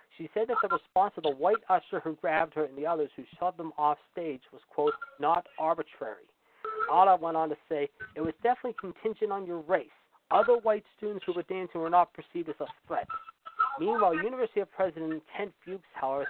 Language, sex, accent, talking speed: English, male, American, 205 wpm